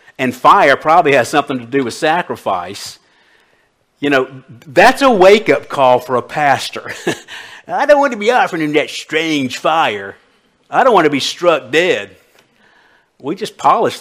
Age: 50-69